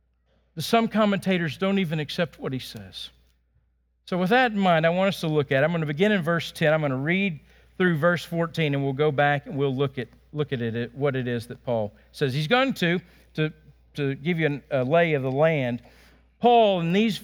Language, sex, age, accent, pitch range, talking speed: English, male, 50-69, American, 125-205 Hz, 230 wpm